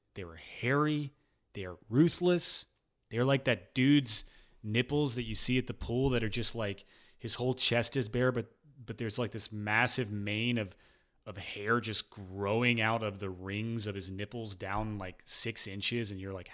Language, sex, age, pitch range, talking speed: English, male, 30-49, 110-145 Hz, 190 wpm